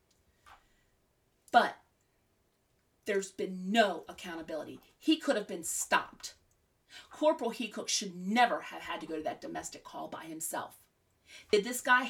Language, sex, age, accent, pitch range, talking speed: English, female, 30-49, American, 190-260 Hz, 135 wpm